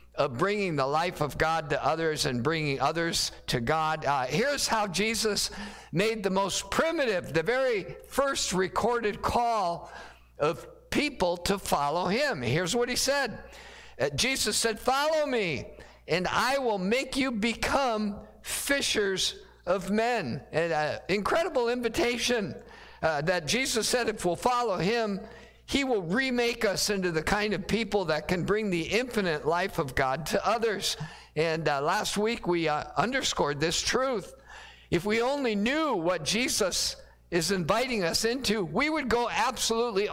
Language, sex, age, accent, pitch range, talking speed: English, male, 50-69, American, 170-235 Hz, 155 wpm